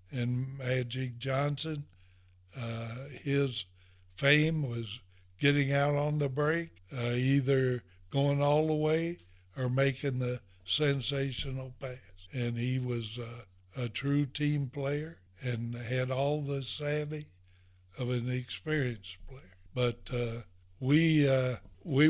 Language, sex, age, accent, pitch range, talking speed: English, male, 60-79, American, 115-140 Hz, 120 wpm